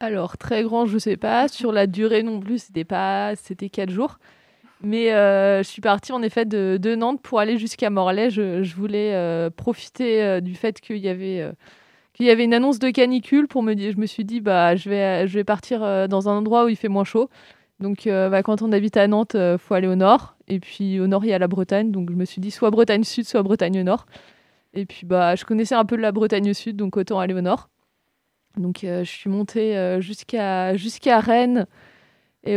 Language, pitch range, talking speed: French, 190-225 Hz, 240 wpm